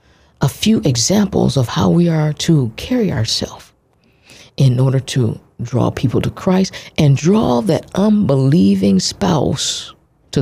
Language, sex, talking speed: English, female, 130 wpm